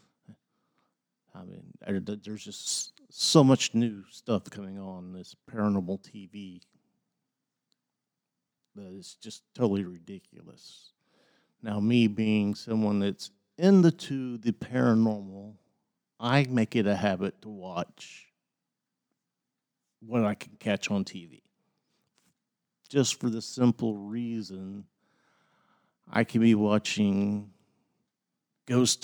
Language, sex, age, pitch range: English, male, 50-69, 95-115 Hz